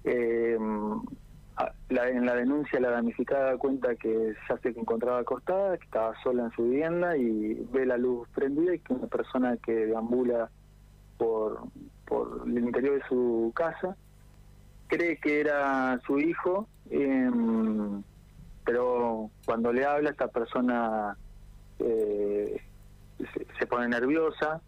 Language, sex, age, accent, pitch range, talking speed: Spanish, male, 30-49, Argentinian, 115-150 Hz, 135 wpm